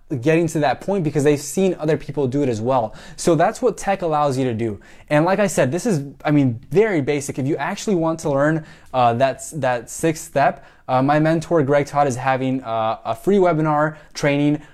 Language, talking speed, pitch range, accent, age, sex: English, 220 wpm, 130-165 Hz, American, 20-39, male